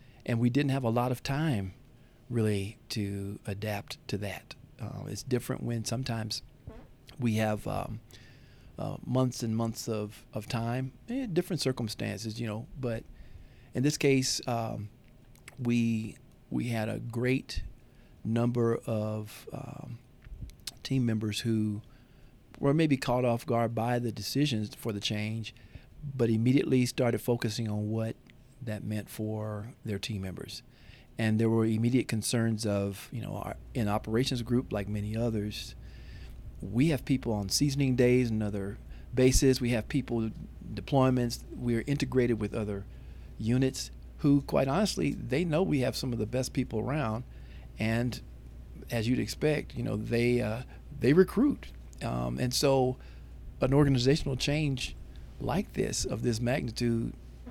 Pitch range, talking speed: 110-130 Hz, 145 wpm